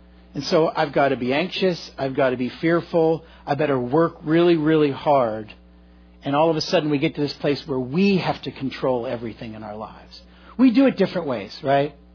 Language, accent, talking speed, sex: English, American, 210 wpm, male